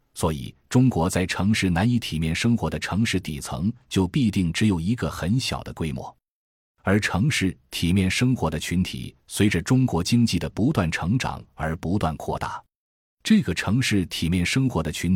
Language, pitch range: Chinese, 85-115 Hz